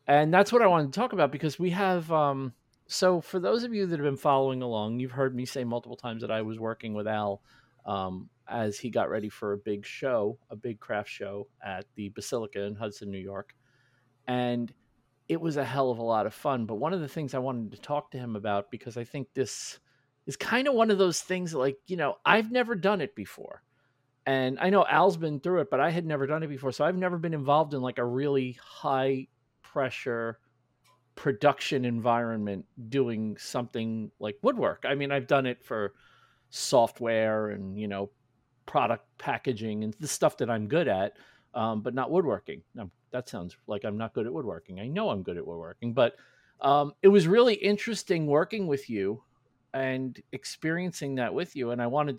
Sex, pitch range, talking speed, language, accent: male, 115-150 Hz, 205 wpm, English, American